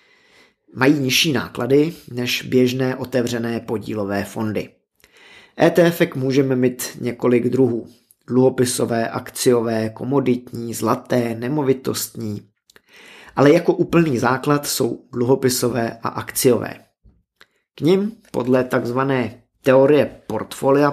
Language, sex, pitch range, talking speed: Czech, male, 120-145 Hz, 90 wpm